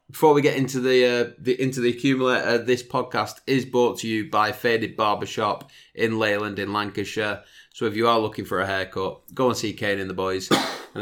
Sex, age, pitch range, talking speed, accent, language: male, 20-39, 105-130 Hz, 225 wpm, British, English